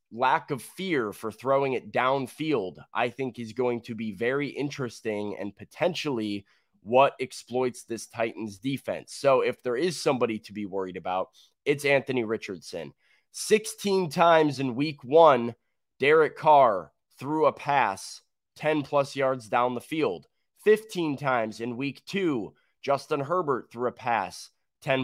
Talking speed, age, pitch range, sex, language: 145 wpm, 20-39, 115-145 Hz, male, English